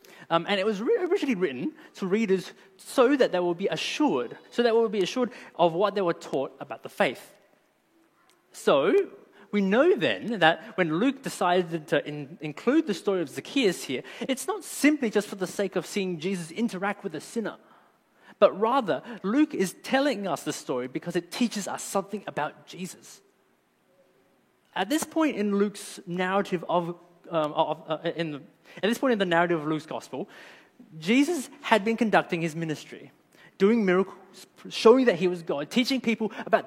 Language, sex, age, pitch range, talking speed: English, male, 20-39, 180-255 Hz, 175 wpm